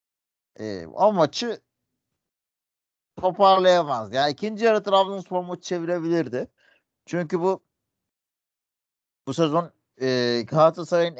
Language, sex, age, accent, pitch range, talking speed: Turkish, male, 50-69, native, 130-180 Hz, 90 wpm